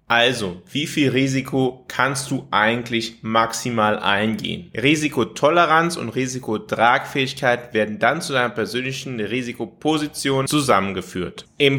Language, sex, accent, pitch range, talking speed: German, male, German, 115-140 Hz, 100 wpm